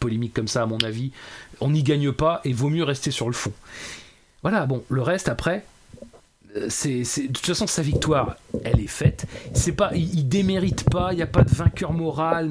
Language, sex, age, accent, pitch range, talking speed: French, male, 30-49, French, 130-180 Hz, 215 wpm